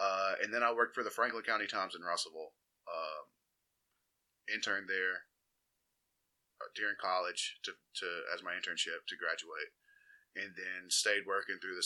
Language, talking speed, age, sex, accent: English, 155 wpm, 20-39, male, American